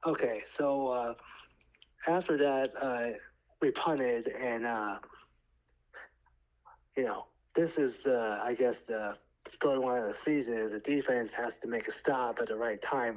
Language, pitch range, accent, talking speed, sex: English, 115-145 Hz, American, 160 wpm, male